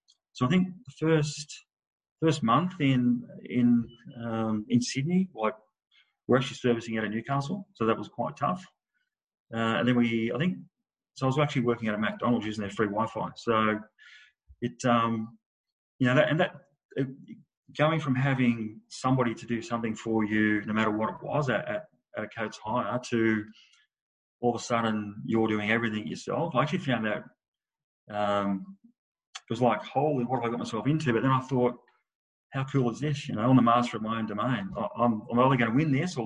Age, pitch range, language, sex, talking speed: 30-49, 115-135 Hz, English, male, 200 wpm